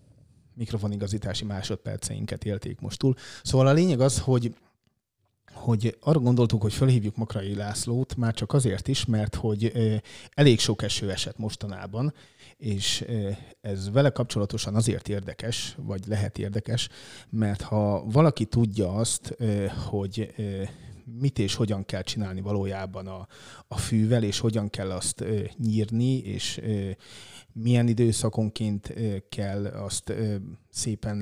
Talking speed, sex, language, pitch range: 120 wpm, male, Hungarian, 100-120 Hz